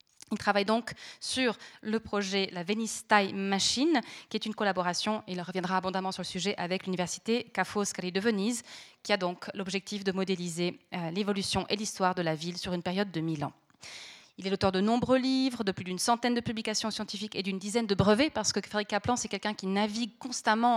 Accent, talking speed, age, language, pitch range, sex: French, 210 wpm, 20-39, French, 195-230 Hz, female